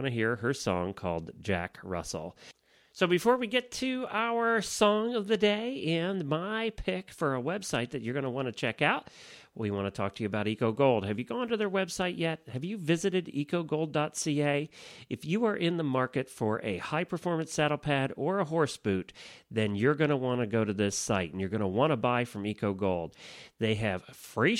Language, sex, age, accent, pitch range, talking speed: English, male, 40-59, American, 110-175 Hz, 215 wpm